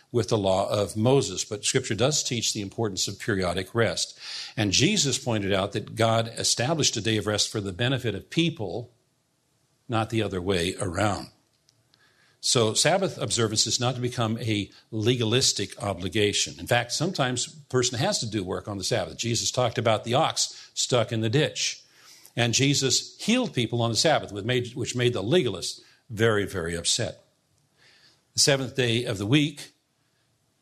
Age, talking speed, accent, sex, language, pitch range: 50-69, 170 wpm, American, male, English, 110-135 Hz